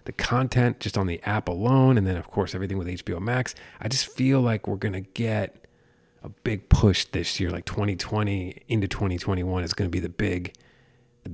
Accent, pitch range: American, 95-120 Hz